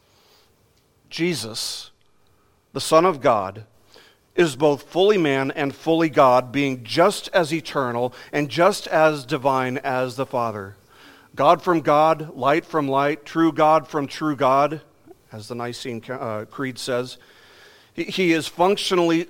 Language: English